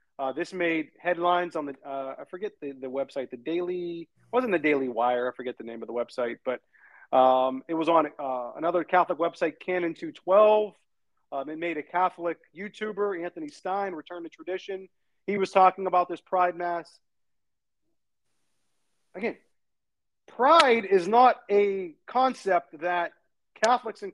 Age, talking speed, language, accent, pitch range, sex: 40-59, 155 wpm, English, American, 165-240 Hz, male